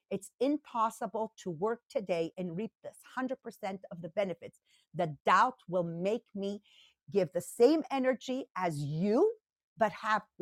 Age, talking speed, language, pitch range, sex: 50-69, 145 wpm, English, 185-265 Hz, female